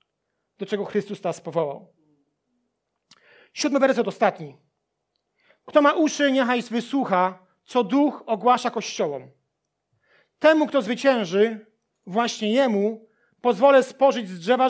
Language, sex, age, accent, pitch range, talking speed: Polish, male, 40-59, native, 210-275 Hz, 105 wpm